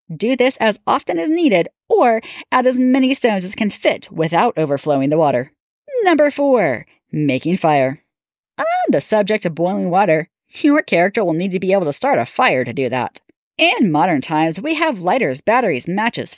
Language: English